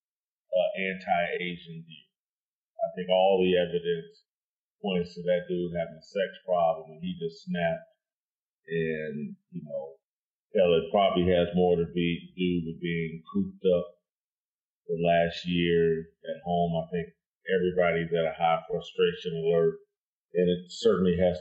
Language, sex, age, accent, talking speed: English, male, 30-49, American, 145 wpm